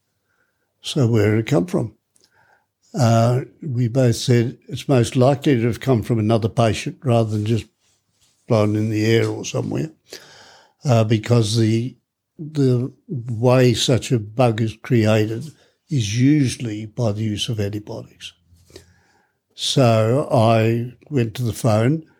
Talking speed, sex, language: 140 wpm, male, English